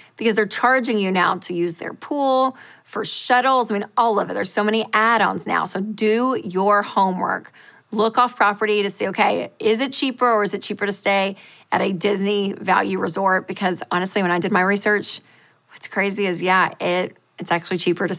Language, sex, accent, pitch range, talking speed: English, female, American, 195-230 Hz, 200 wpm